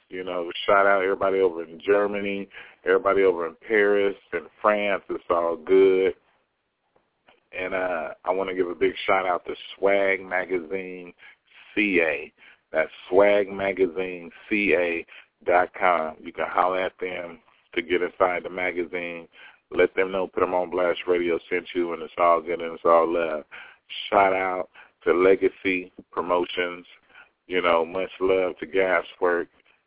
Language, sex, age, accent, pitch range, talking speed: English, male, 40-59, American, 90-100 Hz, 140 wpm